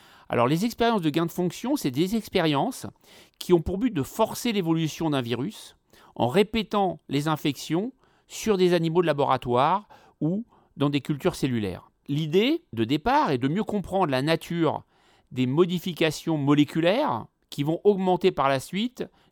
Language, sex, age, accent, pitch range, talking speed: French, male, 40-59, French, 135-185 Hz, 160 wpm